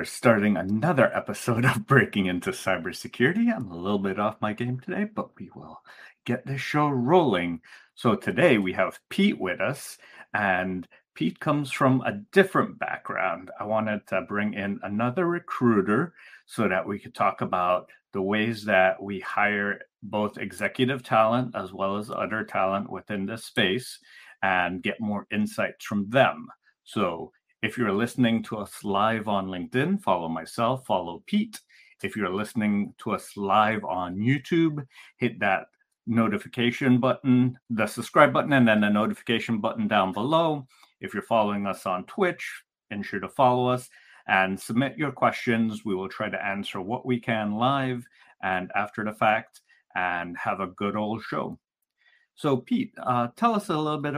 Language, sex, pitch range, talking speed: English, male, 100-130 Hz, 165 wpm